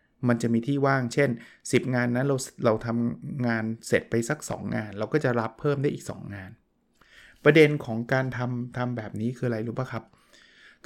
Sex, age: male, 20-39